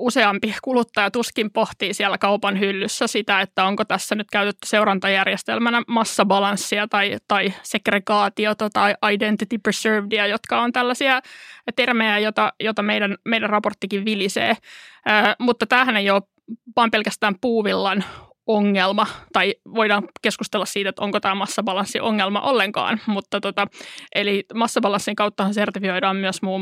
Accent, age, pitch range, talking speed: native, 20-39, 200-225 Hz, 125 wpm